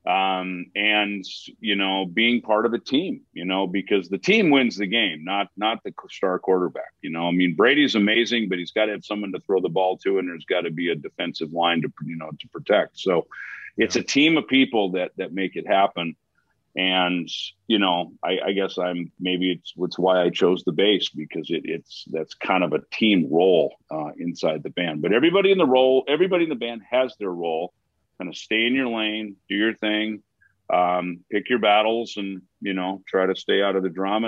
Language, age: English, 40-59